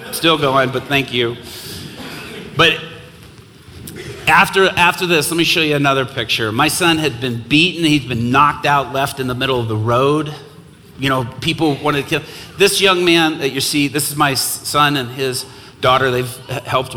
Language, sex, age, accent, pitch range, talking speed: English, male, 40-59, American, 125-150 Hz, 185 wpm